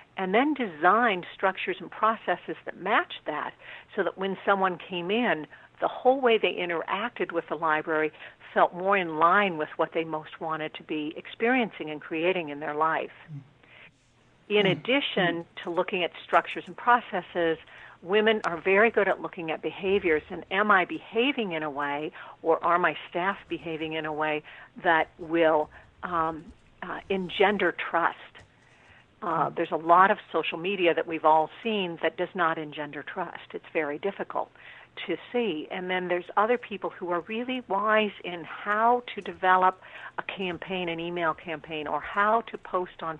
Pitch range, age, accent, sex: 160-200 Hz, 50-69, American, female